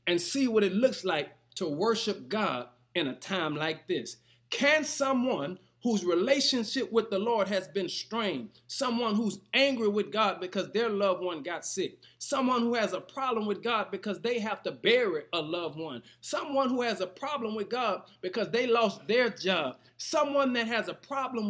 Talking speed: 185 wpm